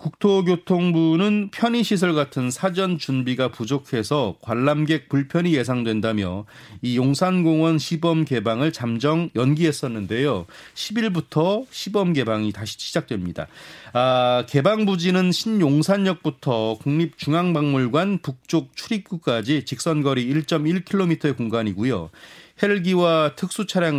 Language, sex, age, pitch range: Korean, male, 30-49, 120-170 Hz